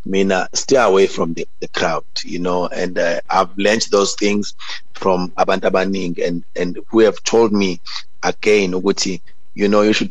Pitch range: 90-100 Hz